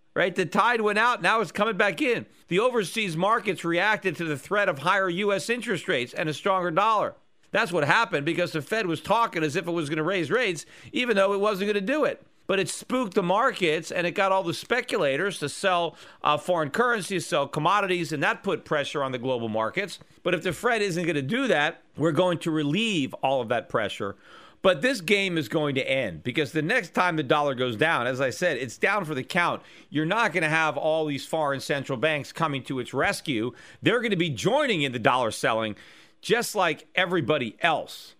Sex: male